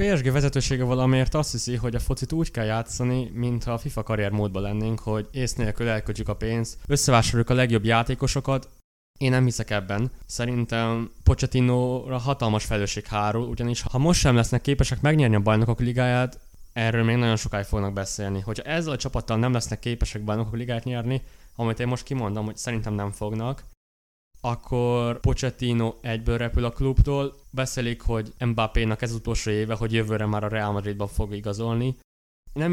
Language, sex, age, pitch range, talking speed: Hungarian, male, 20-39, 105-125 Hz, 165 wpm